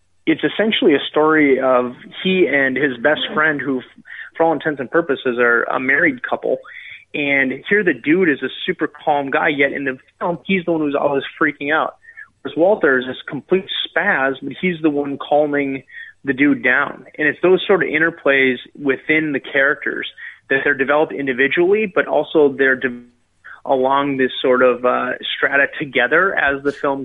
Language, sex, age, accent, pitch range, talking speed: English, male, 30-49, American, 130-165 Hz, 175 wpm